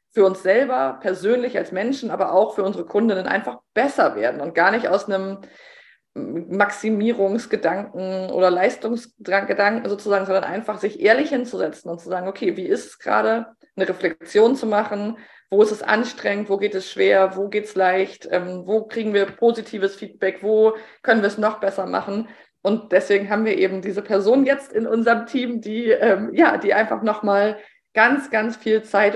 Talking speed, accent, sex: 175 wpm, German, female